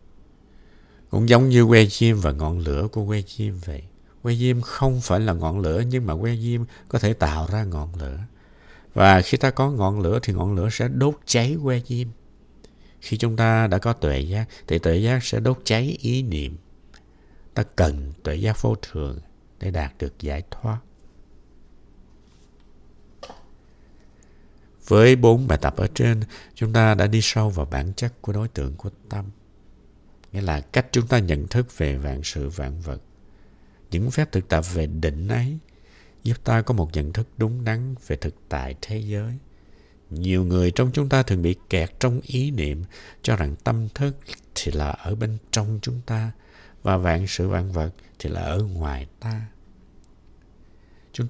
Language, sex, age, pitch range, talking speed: Vietnamese, male, 60-79, 85-115 Hz, 180 wpm